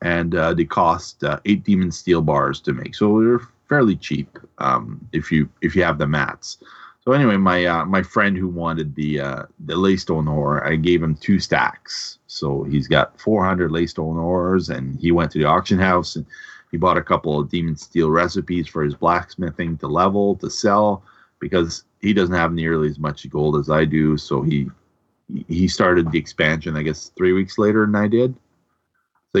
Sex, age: male, 30-49